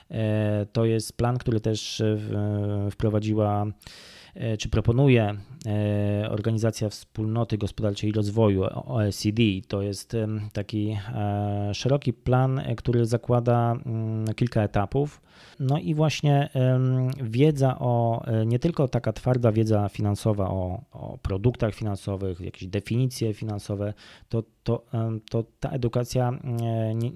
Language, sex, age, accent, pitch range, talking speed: Polish, male, 20-39, native, 105-120 Hz, 105 wpm